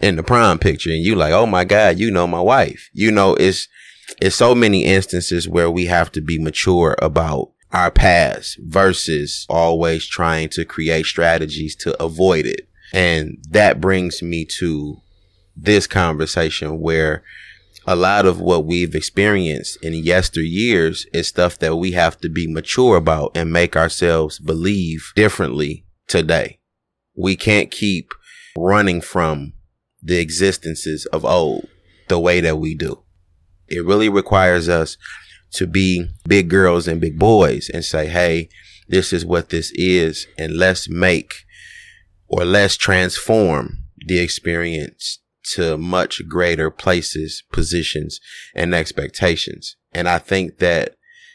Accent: American